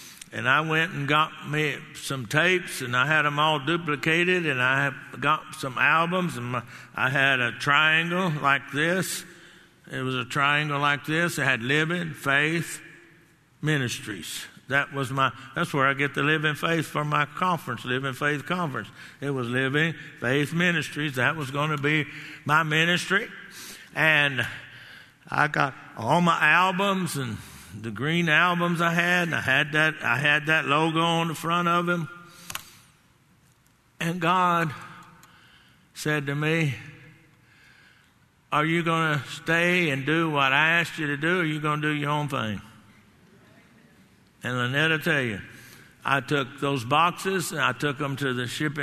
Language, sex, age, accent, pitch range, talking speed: English, male, 60-79, American, 135-165 Hz, 160 wpm